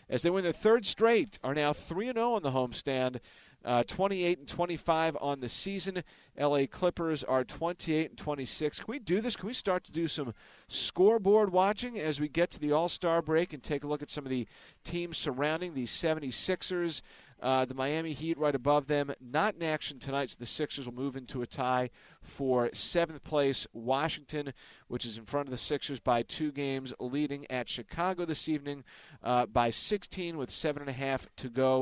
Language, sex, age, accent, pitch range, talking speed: English, male, 40-59, American, 125-165 Hz, 195 wpm